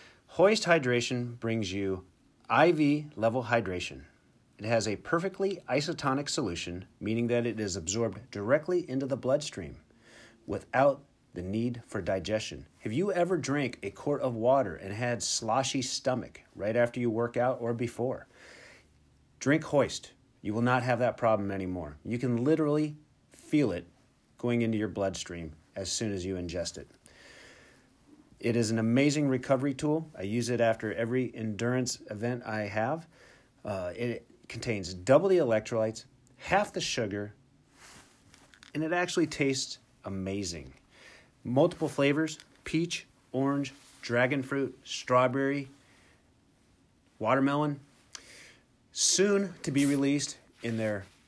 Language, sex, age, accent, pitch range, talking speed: English, male, 40-59, American, 110-140 Hz, 130 wpm